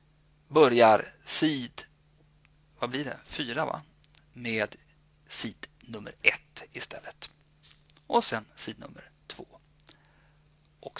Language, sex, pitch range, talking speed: Swedish, male, 125-165 Hz, 85 wpm